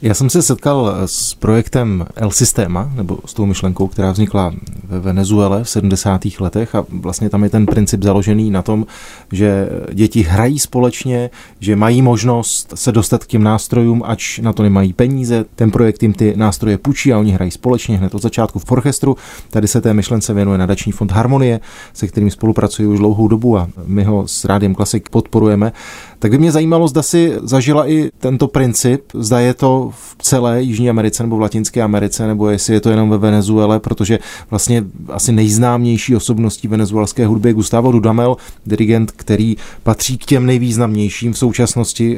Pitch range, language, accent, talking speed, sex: 105-120 Hz, Czech, native, 180 wpm, male